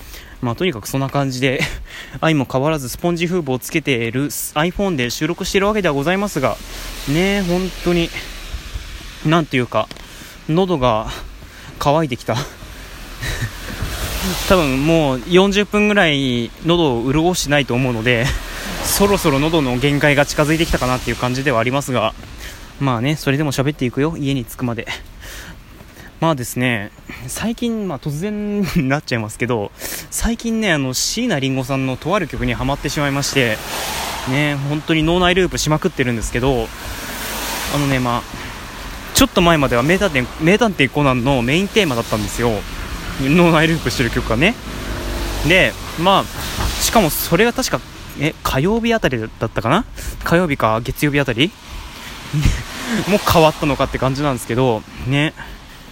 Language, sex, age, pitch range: Japanese, male, 20-39, 120-165 Hz